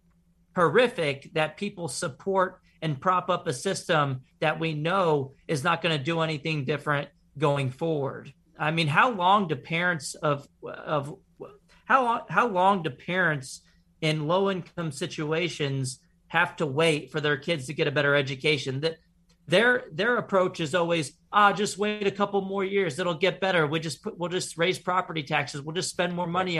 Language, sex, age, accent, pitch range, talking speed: English, male, 40-59, American, 145-180 Hz, 175 wpm